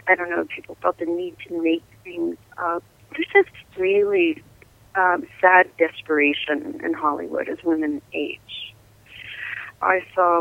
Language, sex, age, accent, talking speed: English, female, 30-49, American, 145 wpm